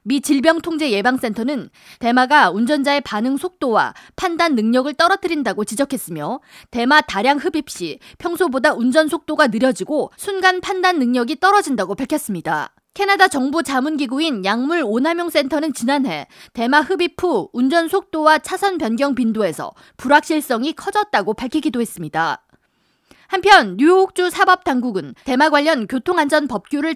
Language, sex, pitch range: Korean, female, 245-335 Hz